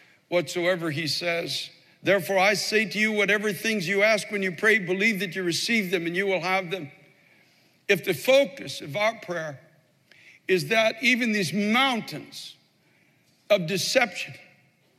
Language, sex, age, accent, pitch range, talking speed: English, male, 60-79, American, 185-245 Hz, 150 wpm